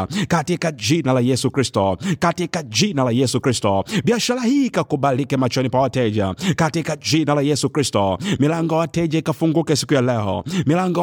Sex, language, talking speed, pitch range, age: male, Swahili, 140 wpm, 130-170 Hz, 50-69